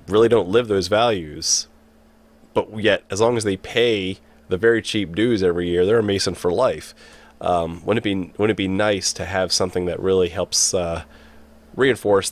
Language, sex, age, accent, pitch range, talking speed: English, male, 30-49, American, 75-100 Hz, 190 wpm